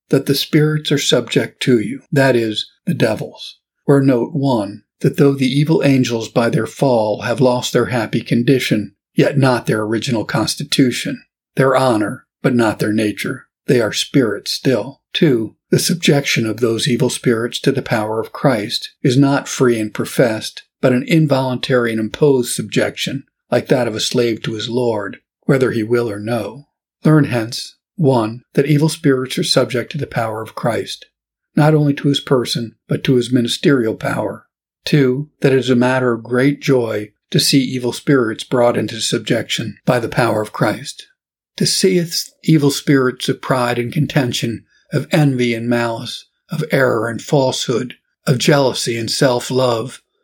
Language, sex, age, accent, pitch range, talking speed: English, male, 50-69, American, 120-140 Hz, 170 wpm